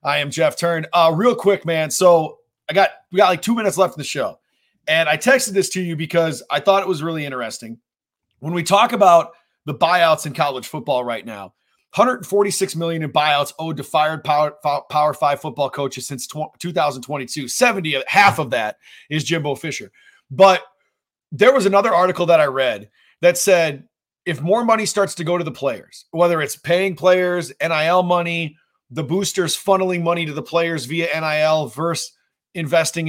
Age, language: 30-49, English